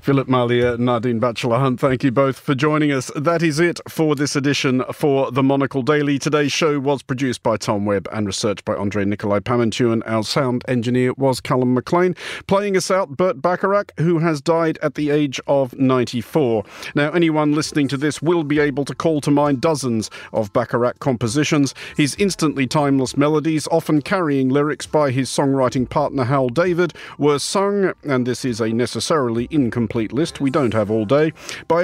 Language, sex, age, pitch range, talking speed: English, male, 40-59, 125-165 Hz, 185 wpm